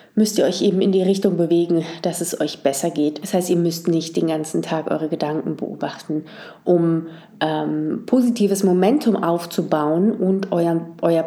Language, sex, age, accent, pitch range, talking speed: German, female, 30-49, German, 160-195 Hz, 170 wpm